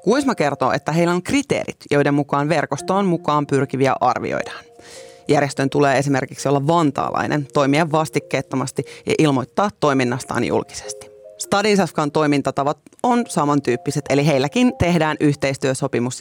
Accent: native